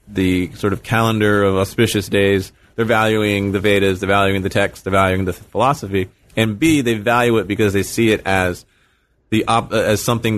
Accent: American